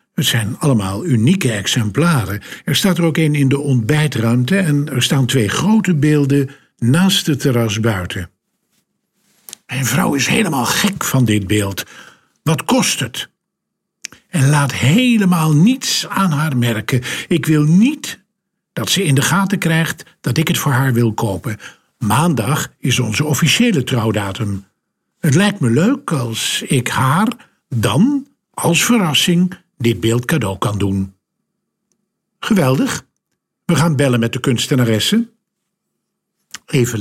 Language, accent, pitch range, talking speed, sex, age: Dutch, Dutch, 115-170 Hz, 140 wpm, male, 50-69